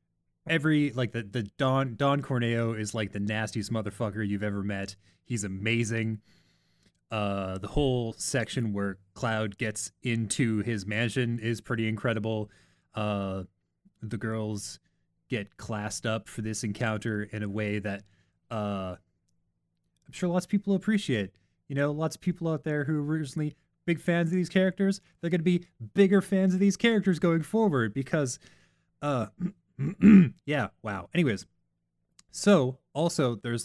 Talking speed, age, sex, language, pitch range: 150 wpm, 30-49, male, English, 105-155 Hz